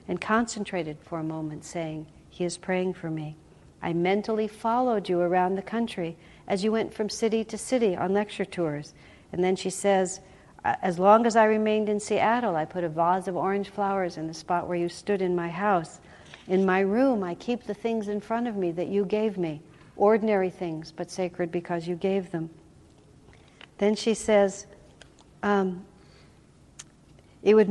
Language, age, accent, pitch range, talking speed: English, 60-79, American, 175-210 Hz, 180 wpm